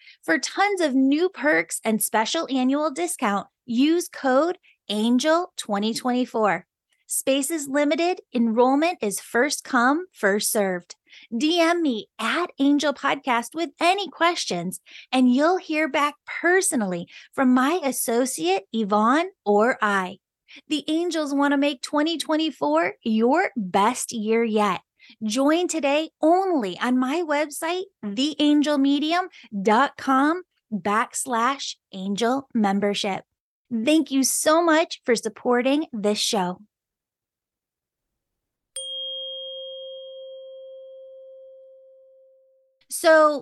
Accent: American